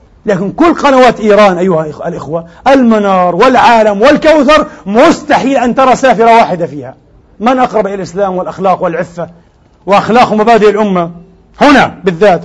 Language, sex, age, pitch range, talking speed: Arabic, male, 40-59, 195-260 Hz, 125 wpm